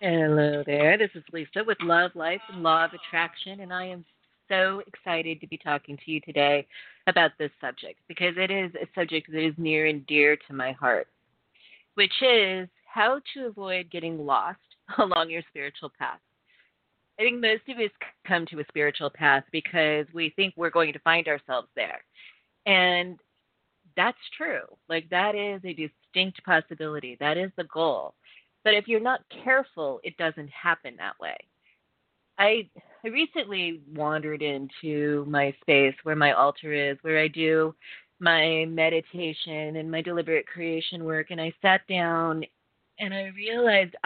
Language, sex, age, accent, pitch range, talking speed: English, female, 30-49, American, 155-195 Hz, 165 wpm